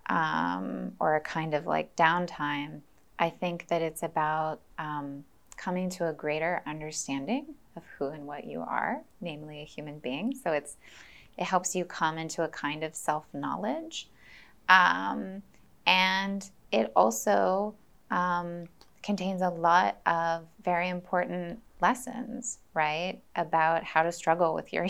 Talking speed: 140 wpm